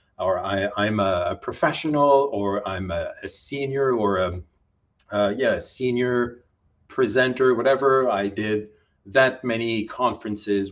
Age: 40-59